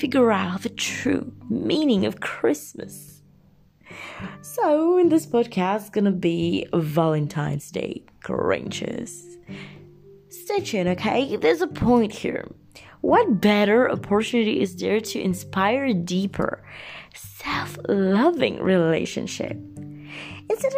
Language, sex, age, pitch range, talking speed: English, female, 20-39, 175-245 Hz, 105 wpm